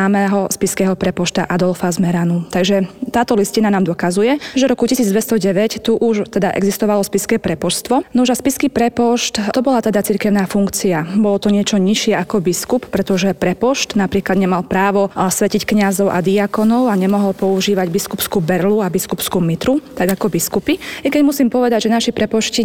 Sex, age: female, 20-39